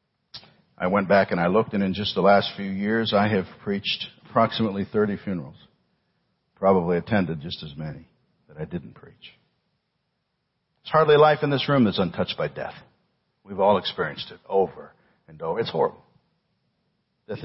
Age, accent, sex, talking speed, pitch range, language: 60-79, American, male, 165 wpm, 100-130 Hz, English